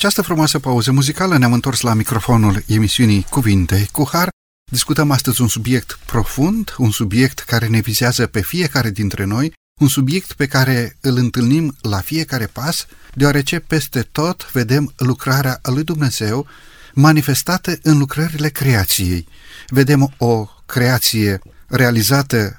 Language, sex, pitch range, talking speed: Romanian, male, 115-150 Hz, 135 wpm